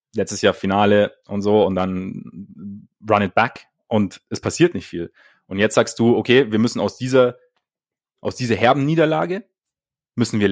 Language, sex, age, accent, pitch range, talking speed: German, male, 30-49, German, 105-140 Hz, 170 wpm